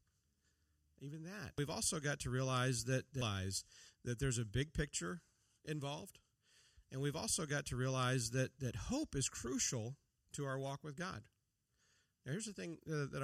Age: 40-59